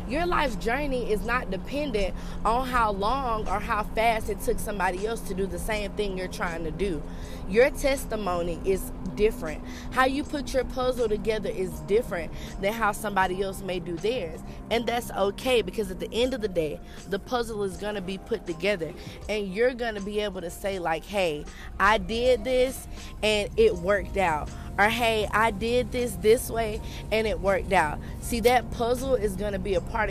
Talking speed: 195 wpm